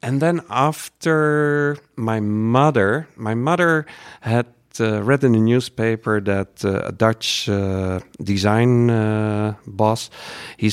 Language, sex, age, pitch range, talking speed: French, male, 50-69, 105-150 Hz, 125 wpm